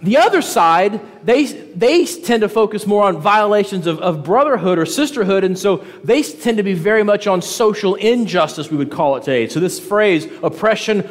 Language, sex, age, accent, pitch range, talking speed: English, male, 40-59, American, 165-220 Hz, 195 wpm